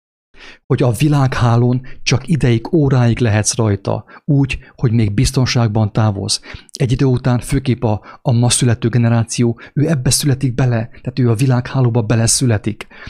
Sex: male